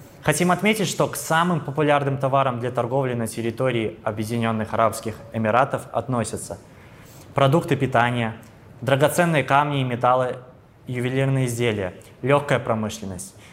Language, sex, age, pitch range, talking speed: Russian, male, 20-39, 120-145 Hz, 110 wpm